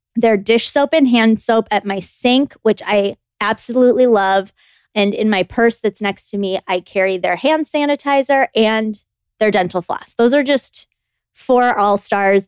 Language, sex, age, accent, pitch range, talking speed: English, female, 20-39, American, 195-235 Hz, 170 wpm